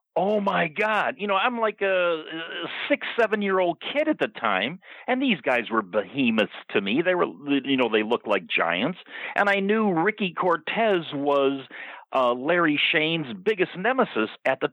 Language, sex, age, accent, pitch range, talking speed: English, male, 50-69, American, 125-165 Hz, 175 wpm